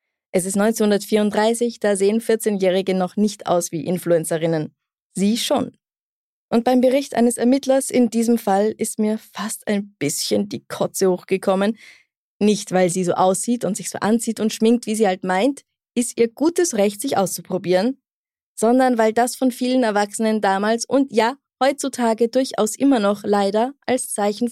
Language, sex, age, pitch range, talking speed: German, female, 20-39, 185-230 Hz, 160 wpm